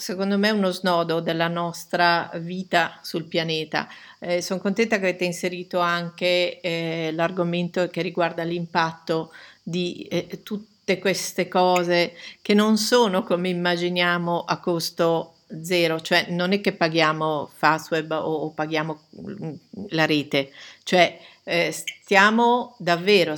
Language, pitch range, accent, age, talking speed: Italian, 165-185 Hz, native, 50-69, 130 wpm